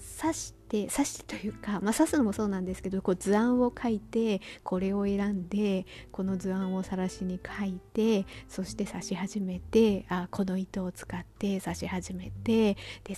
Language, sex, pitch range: Japanese, female, 185-235 Hz